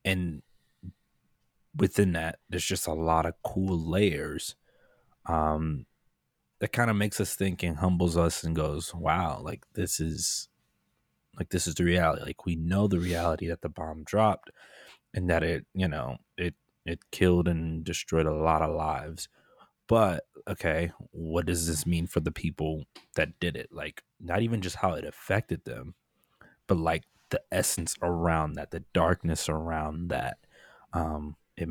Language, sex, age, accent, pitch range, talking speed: English, male, 20-39, American, 80-90 Hz, 165 wpm